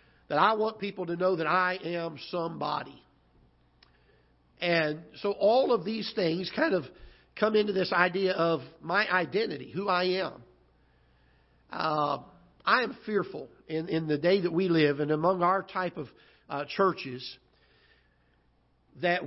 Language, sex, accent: English, male, American